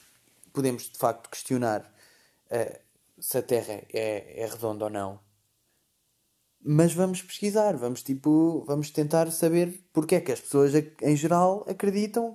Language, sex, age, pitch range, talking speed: Portuguese, male, 20-39, 125-150 Hz, 145 wpm